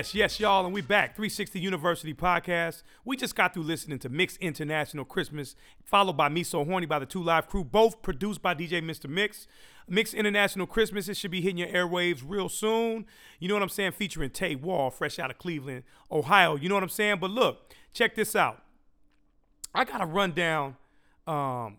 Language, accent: English, American